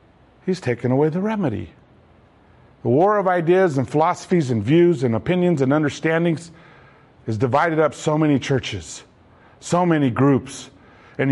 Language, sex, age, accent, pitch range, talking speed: English, male, 50-69, American, 140-200 Hz, 145 wpm